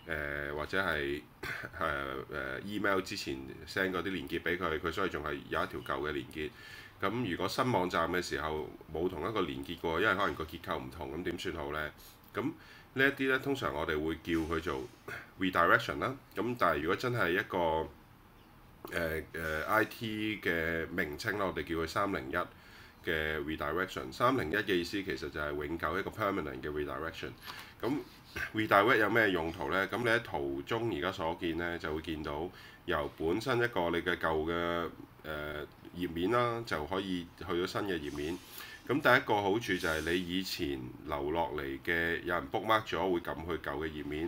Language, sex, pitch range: Chinese, male, 75-95 Hz